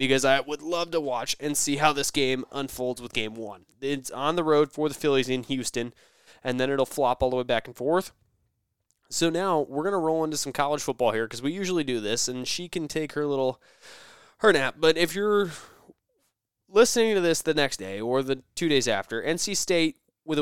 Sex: male